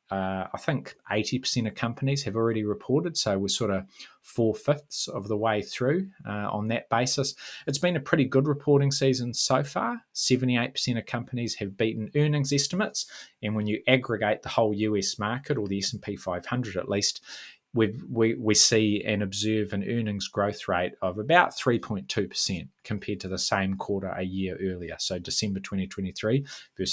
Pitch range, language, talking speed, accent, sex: 95-125 Hz, English, 170 wpm, Australian, male